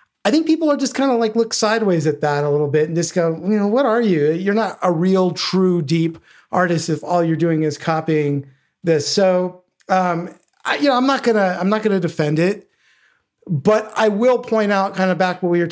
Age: 40-59